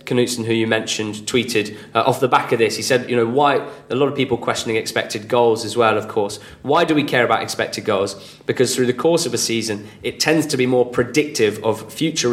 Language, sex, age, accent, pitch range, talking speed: English, male, 20-39, British, 110-125 Hz, 240 wpm